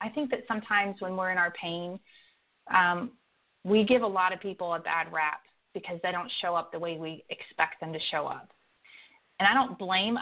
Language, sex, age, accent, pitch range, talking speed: English, female, 30-49, American, 170-215 Hz, 210 wpm